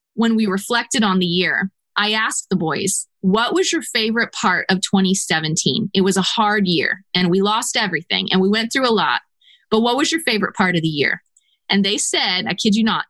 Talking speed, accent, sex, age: 220 wpm, American, female, 20-39